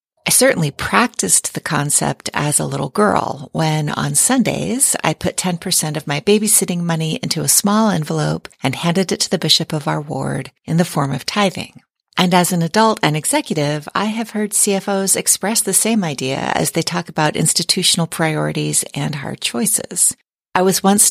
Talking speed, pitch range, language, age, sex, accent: 180 wpm, 155-200 Hz, English, 40-59, female, American